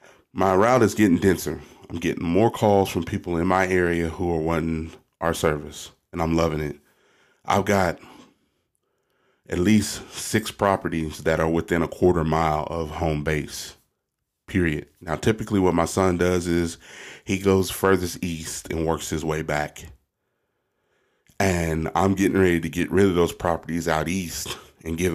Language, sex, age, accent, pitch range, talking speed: English, male, 30-49, American, 80-95 Hz, 165 wpm